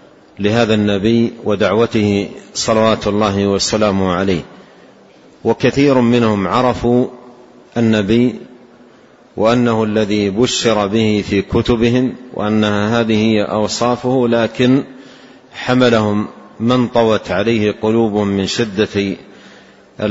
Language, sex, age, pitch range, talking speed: Arabic, male, 50-69, 105-120 Hz, 85 wpm